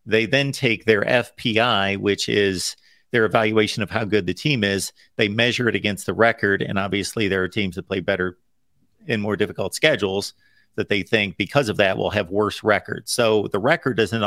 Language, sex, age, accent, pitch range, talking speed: English, male, 50-69, American, 100-125 Hz, 200 wpm